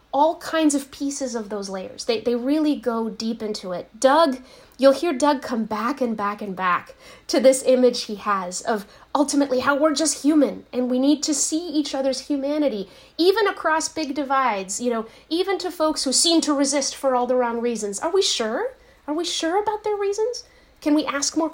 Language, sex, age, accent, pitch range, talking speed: English, female, 30-49, American, 225-295 Hz, 205 wpm